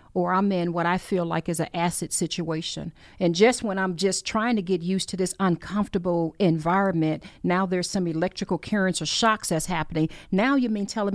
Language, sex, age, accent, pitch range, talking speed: English, female, 40-59, American, 165-205 Hz, 200 wpm